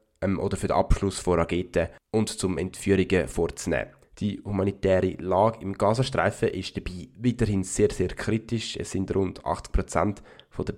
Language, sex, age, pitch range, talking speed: German, male, 20-39, 90-105 Hz, 150 wpm